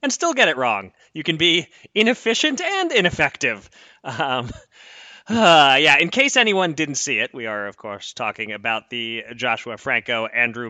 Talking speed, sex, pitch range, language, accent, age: 165 wpm, male, 115-170 Hz, English, American, 30-49